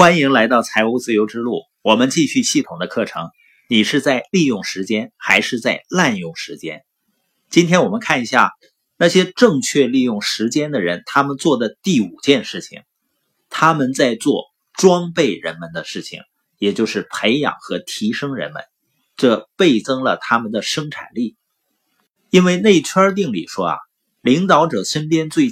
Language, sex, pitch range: Chinese, male, 130-185 Hz